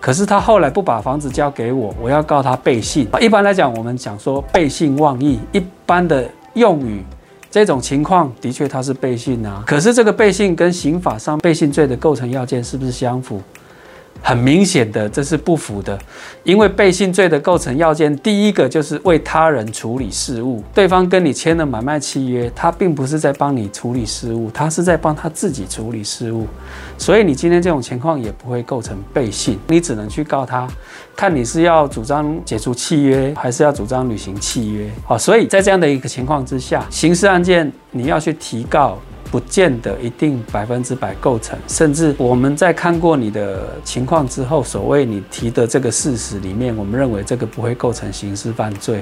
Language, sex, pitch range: Chinese, male, 115-155 Hz